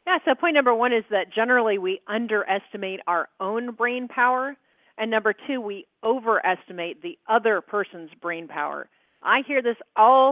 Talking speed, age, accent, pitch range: 165 wpm, 40-59, American, 190-245 Hz